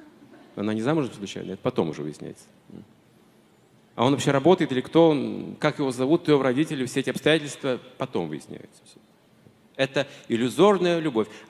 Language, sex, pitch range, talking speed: Russian, male, 115-160 Hz, 150 wpm